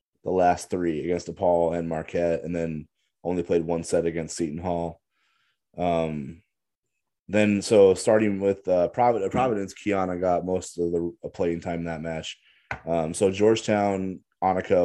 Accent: American